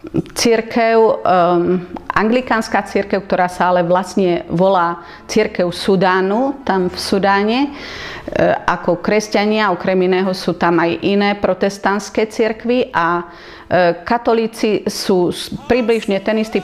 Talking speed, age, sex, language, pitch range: 110 wpm, 40-59, female, Slovak, 180-220 Hz